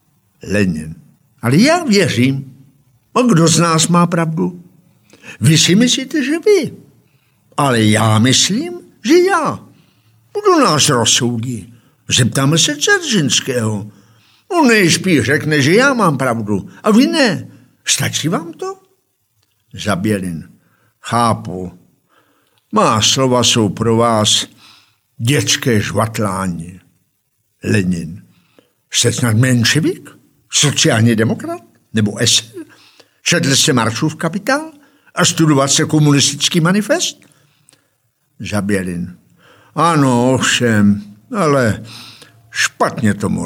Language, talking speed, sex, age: Czech, 100 wpm, male, 60-79